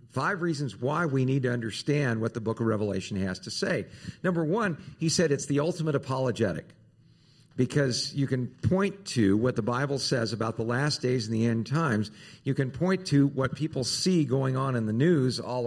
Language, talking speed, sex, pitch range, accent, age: English, 205 wpm, male, 110-145 Hz, American, 50-69